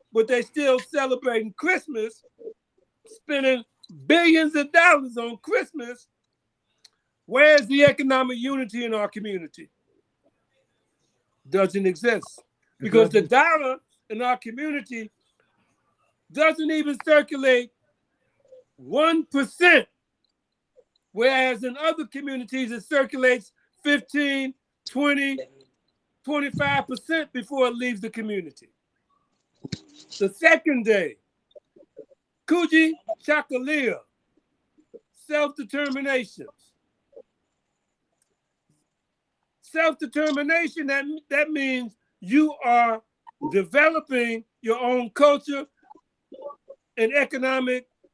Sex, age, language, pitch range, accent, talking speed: male, 60-79, Russian, 235-305 Hz, American, 75 wpm